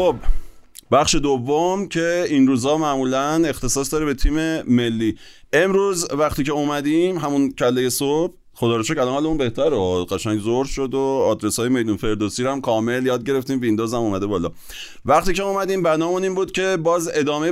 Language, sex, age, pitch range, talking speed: Persian, male, 30-49, 110-145 Hz, 165 wpm